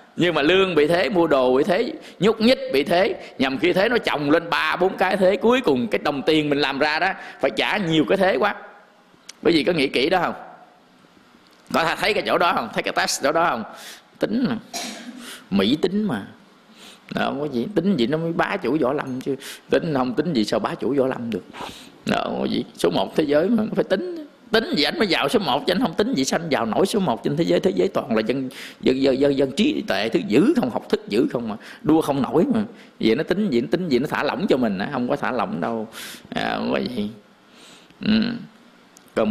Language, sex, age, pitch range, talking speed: English, male, 20-39, 130-215 Hz, 240 wpm